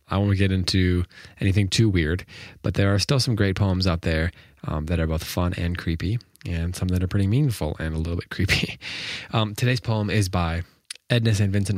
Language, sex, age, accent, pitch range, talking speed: English, male, 20-39, American, 90-105 Hz, 215 wpm